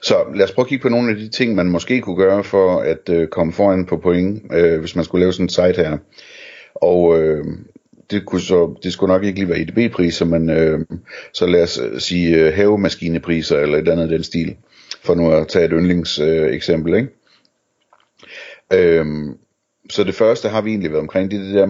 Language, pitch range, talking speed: Danish, 85-100 Hz, 215 wpm